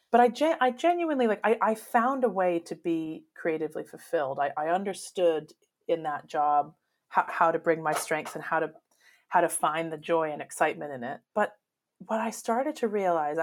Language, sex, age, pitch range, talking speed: English, female, 30-49, 160-210 Hz, 195 wpm